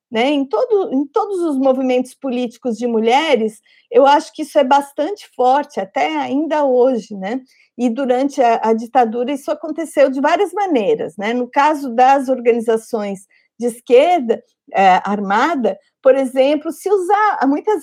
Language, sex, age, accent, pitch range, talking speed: Portuguese, female, 50-69, Brazilian, 225-295 Hz, 150 wpm